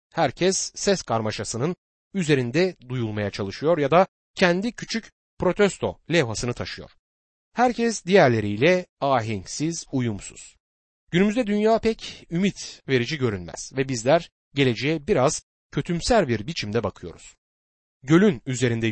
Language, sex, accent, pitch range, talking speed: Turkish, male, native, 110-175 Hz, 105 wpm